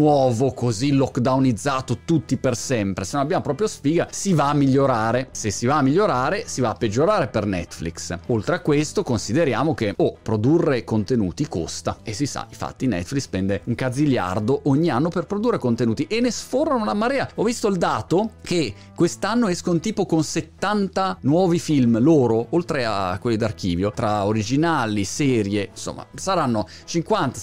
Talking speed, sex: 165 wpm, male